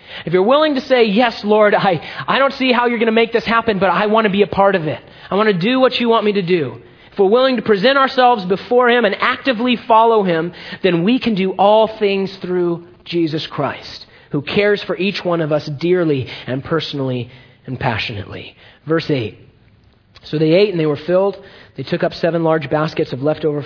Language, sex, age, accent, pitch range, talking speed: English, male, 30-49, American, 150-200 Hz, 230 wpm